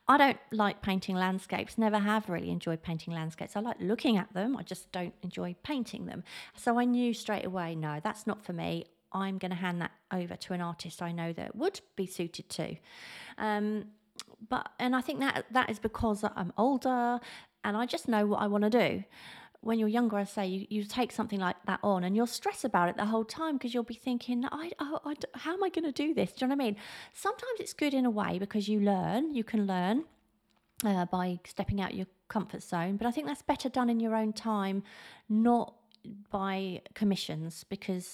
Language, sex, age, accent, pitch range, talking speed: English, female, 30-49, British, 185-240 Hz, 220 wpm